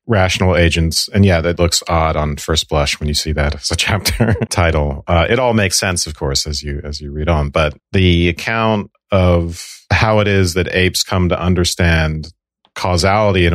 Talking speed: 200 wpm